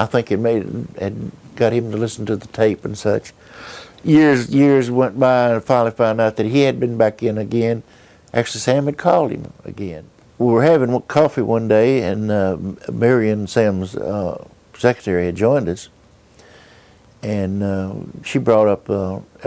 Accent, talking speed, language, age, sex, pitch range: American, 180 wpm, English, 60-79, male, 100-120 Hz